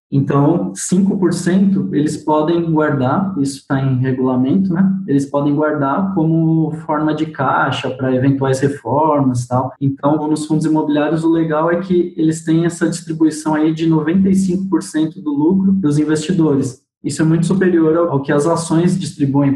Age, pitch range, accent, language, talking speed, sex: 20-39, 140-165 Hz, Brazilian, Portuguese, 155 wpm, male